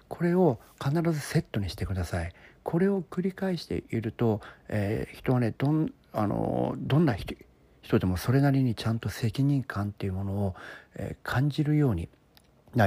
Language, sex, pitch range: Japanese, male, 95-145 Hz